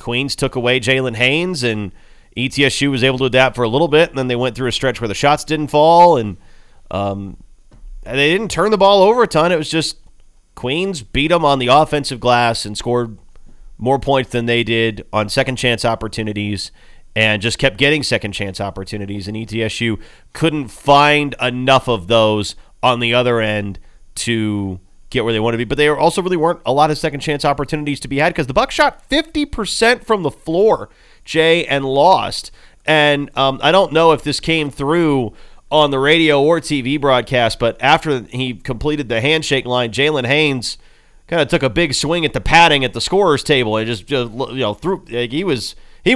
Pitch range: 115-155 Hz